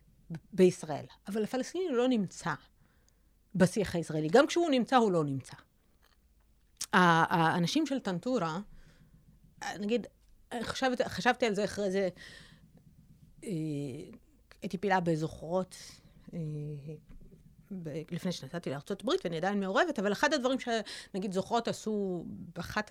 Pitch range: 170-235 Hz